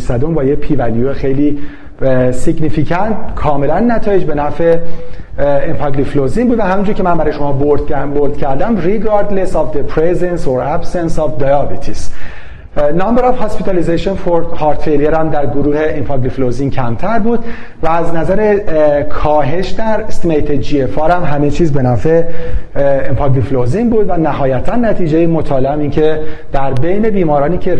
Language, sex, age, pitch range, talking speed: Persian, male, 40-59, 135-175 Hz, 140 wpm